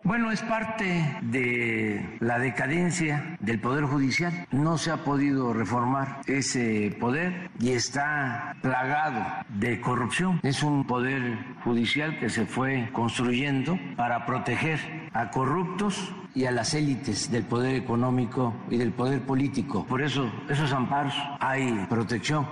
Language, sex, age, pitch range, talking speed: Spanish, male, 50-69, 120-160 Hz, 135 wpm